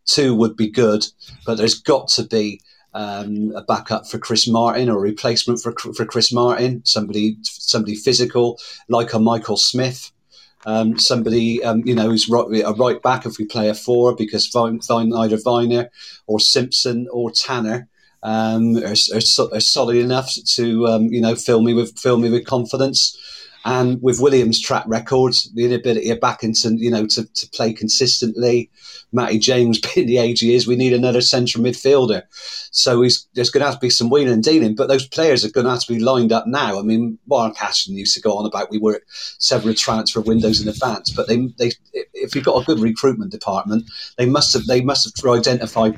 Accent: British